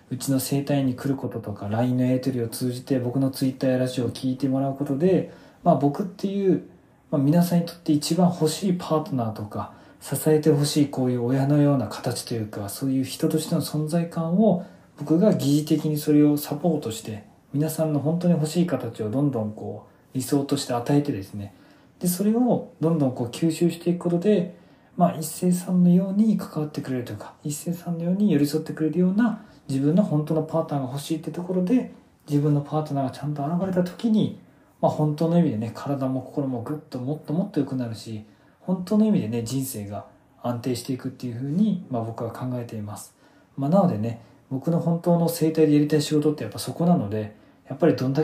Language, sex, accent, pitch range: Japanese, male, native, 130-170 Hz